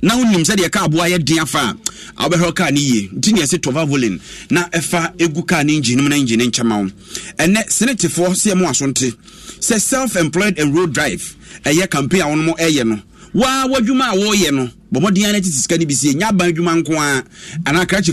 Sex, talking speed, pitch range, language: male, 180 wpm, 145-190 Hz, English